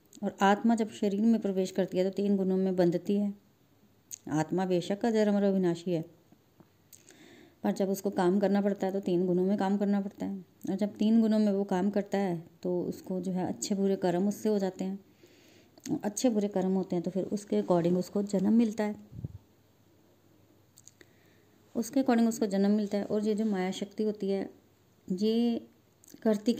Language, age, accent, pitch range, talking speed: Hindi, 30-49, native, 180-215 Hz, 185 wpm